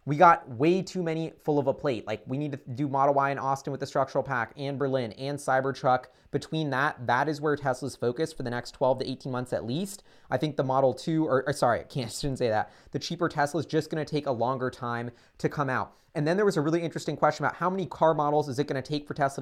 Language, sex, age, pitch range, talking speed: English, male, 20-39, 130-155 Hz, 280 wpm